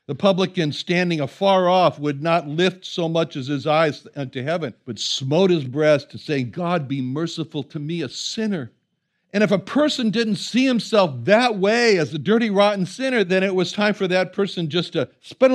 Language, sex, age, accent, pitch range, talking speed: English, male, 60-79, American, 150-205 Hz, 200 wpm